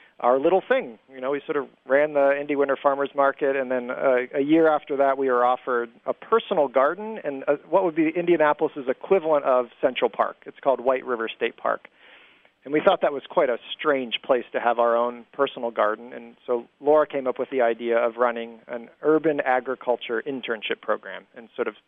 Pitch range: 120-150 Hz